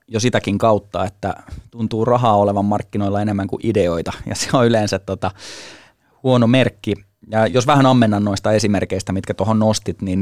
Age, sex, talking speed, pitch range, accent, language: 20-39, male, 165 wpm, 100-120 Hz, native, Finnish